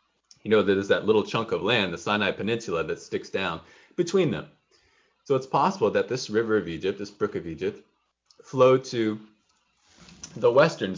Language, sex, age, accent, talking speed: English, male, 30-49, American, 175 wpm